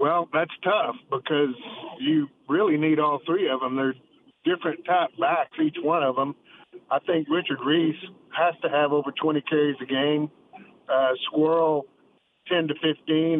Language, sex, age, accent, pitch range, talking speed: English, male, 50-69, American, 140-165 Hz, 160 wpm